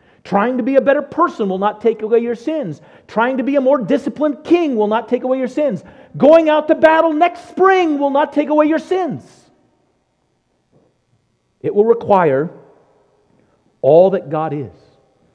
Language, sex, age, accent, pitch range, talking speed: English, male, 50-69, American, 125-195 Hz, 170 wpm